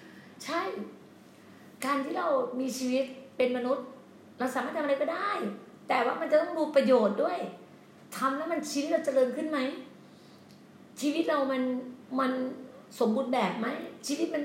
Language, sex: Thai, female